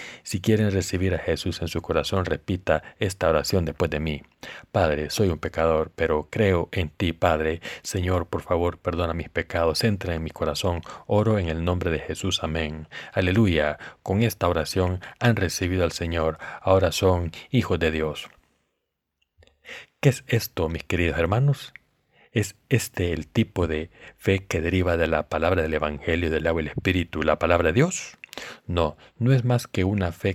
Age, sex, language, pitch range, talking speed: 40-59, male, Spanish, 80-95 Hz, 175 wpm